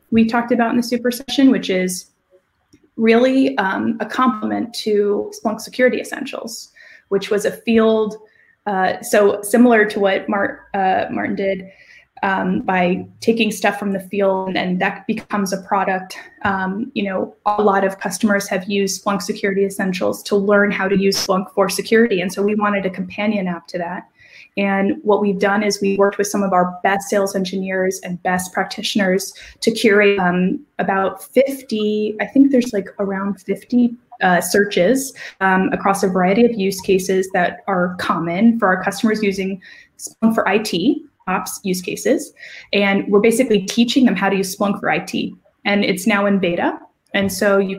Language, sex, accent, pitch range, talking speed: English, female, American, 190-220 Hz, 175 wpm